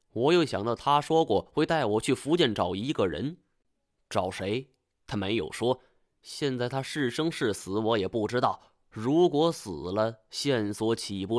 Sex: male